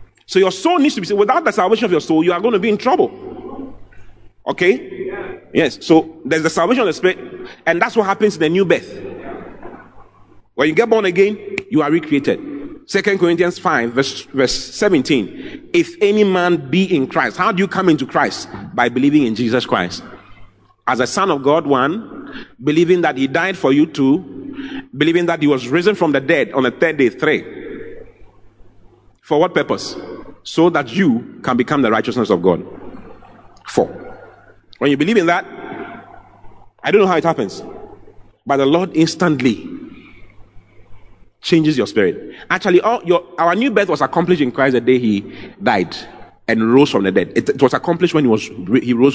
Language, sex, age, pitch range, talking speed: English, male, 30-49, 150-250 Hz, 180 wpm